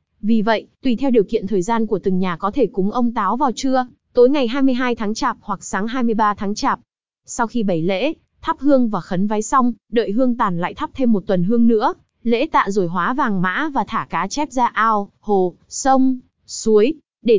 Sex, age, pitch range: female, 20-39, 205-255 Hz